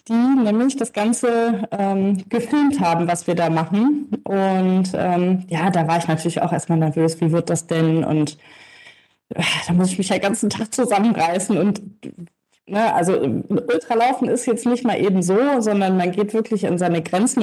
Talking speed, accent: 185 wpm, German